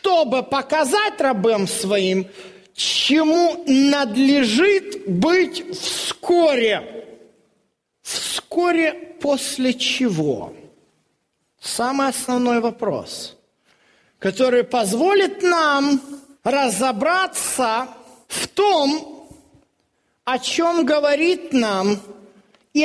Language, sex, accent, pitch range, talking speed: Russian, male, native, 190-275 Hz, 65 wpm